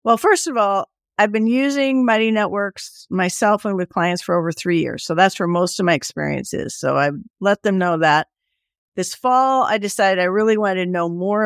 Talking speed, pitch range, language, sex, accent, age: 215 wpm, 175-225 Hz, English, female, American, 50-69